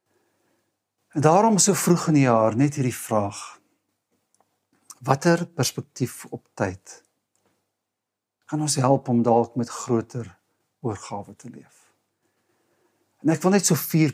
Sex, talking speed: male, 130 wpm